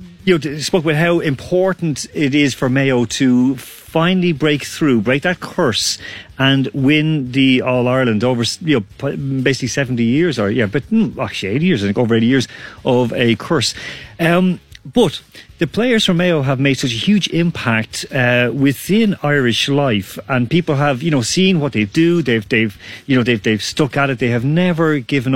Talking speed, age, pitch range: 185 wpm, 40-59, 125-165 Hz